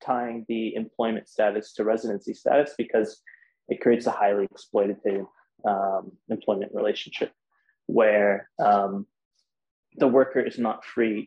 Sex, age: male, 20-39